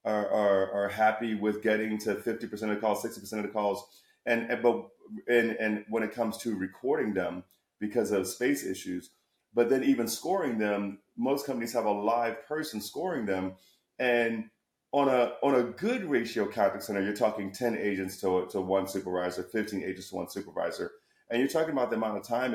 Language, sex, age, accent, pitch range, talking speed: English, male, 30-49, American, 100-120 Hz, 195 wpm